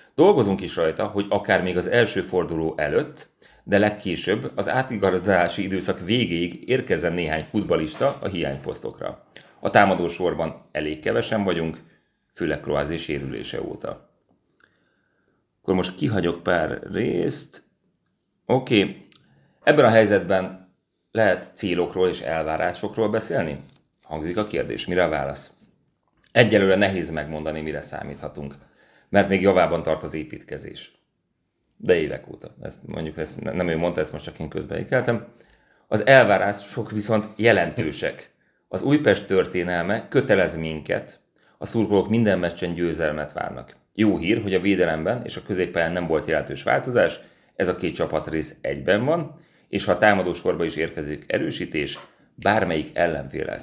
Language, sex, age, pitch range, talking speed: Hungarian, male, 30-49, 80-100 Hz, 135 wpm